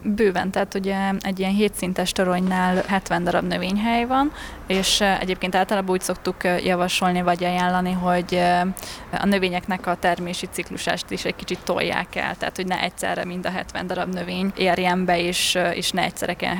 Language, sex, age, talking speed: Hungarian, female, 20-39, 170 wpm